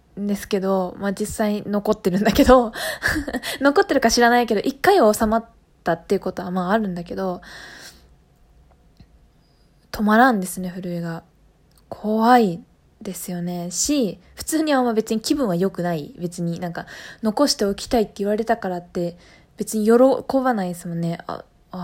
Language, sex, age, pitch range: Japanese, female, 20-39, 190-250 Hz